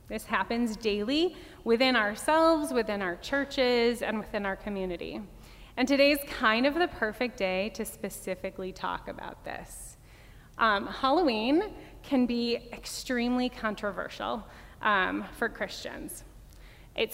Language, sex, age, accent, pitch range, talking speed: English, female, 20-39, American, 195-260 Hz, 120 wpm